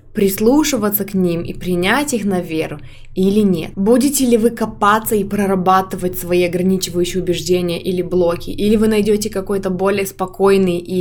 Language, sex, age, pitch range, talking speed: Russian, female, 20-39, 180-210 Hz, 145 wpm